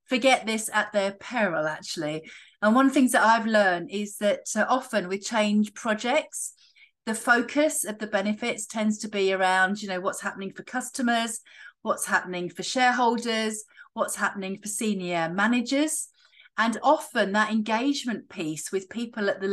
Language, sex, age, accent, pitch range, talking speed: English, female, 40-59, British, 195-235 Hz, 165 wpm